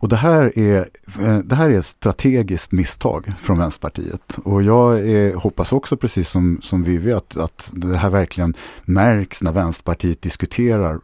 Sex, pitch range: male, 90-115 Hz